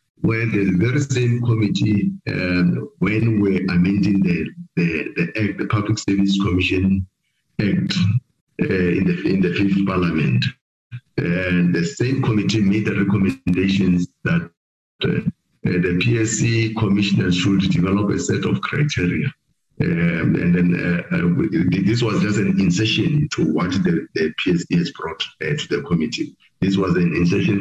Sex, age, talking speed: male, 50-69, 140 wpm